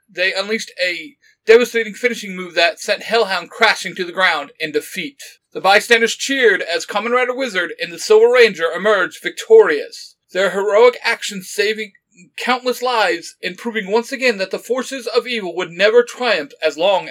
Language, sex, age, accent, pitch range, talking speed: English, male, 40-59, American, 160-275 Hz, 170 wpm